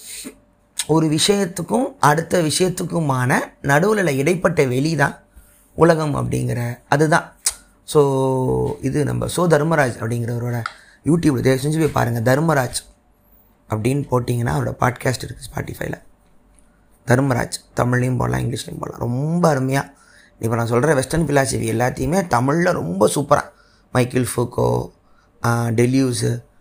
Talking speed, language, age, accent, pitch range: 110 wpm, Tamil, 20-39, native, 125-160 Hz